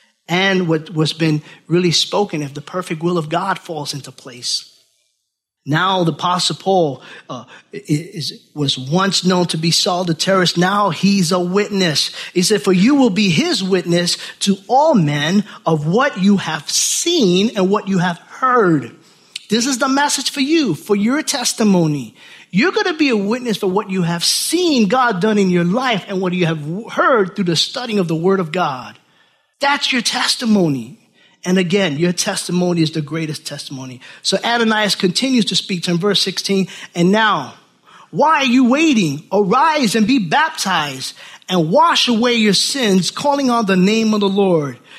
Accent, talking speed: American, 175 wpm